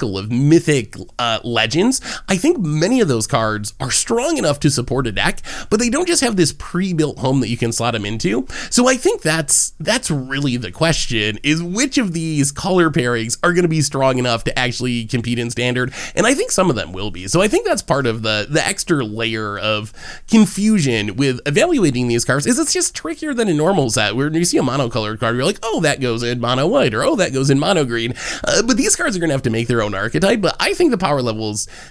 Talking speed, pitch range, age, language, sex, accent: 235 wpm, 115-165 Hz, 20-39, English, male, American